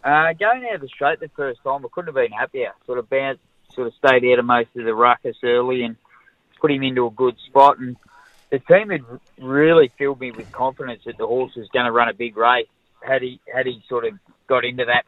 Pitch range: 120-140 Hz